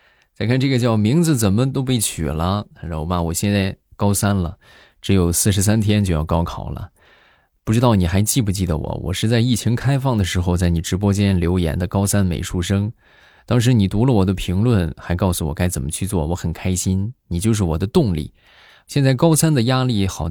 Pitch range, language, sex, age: 85-110 Hz, Chinese, male, 20-39